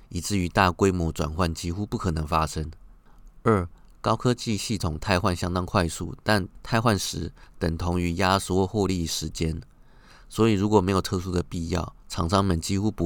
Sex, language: male, Chinese